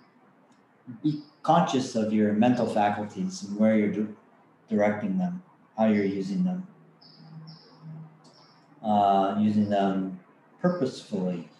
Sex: male